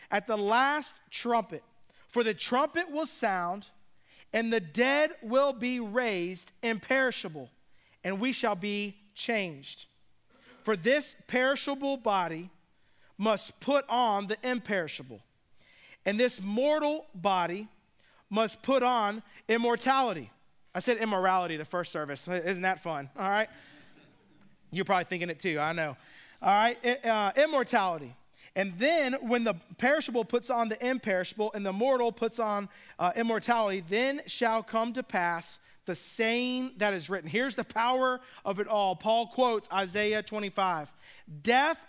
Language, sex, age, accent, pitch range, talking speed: English, male, 40-59, American, 190-250 Hz, 140 wpm